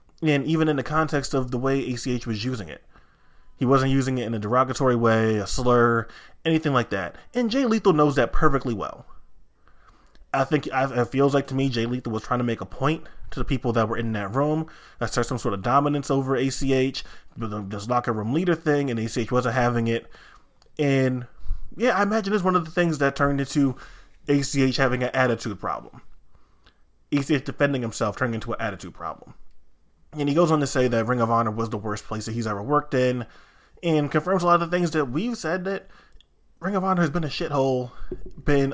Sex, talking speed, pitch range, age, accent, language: male, 210 wpm, 115-145 Hz, 20-39, American, English